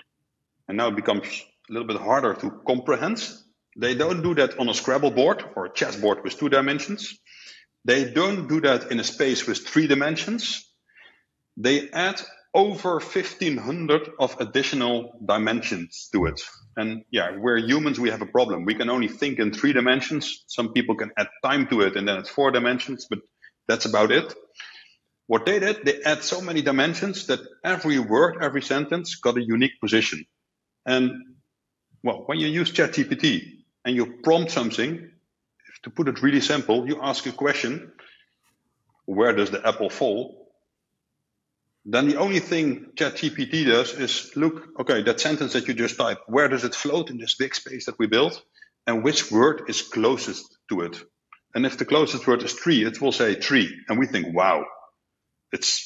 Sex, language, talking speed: male, English, 175 wpm